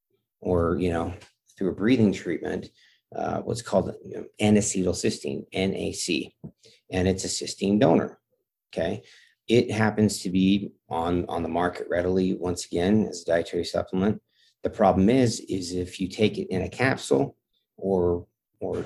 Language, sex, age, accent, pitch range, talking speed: English, male, 40-59, American, 90-105 Hz, 155 wpm